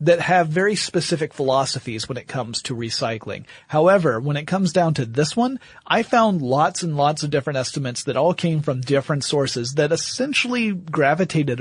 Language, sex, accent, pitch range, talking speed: English, male, American, 130-165 Hz, 180 wpm